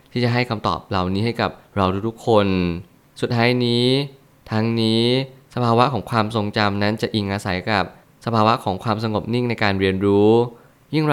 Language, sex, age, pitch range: Thai, male, 20-39, 100-120 Hz